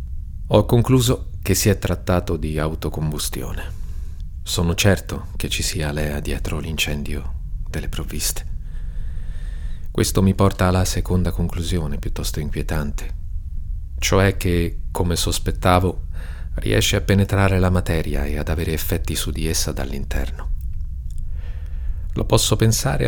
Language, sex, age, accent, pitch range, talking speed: Italian, male, 40-59, native, 75-95 Hz, 120 wpm